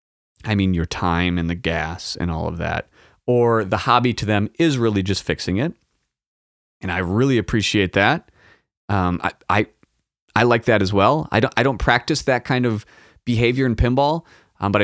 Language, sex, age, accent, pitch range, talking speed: English, male, 30-49, American, 90-130 Hz, 190 wpm